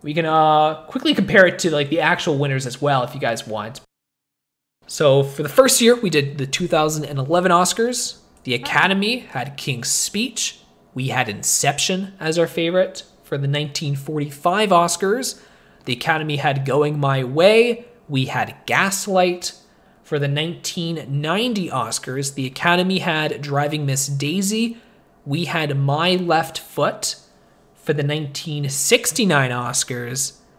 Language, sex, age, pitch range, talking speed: English, male, 20-39, 140-180 Hz, 135 wpm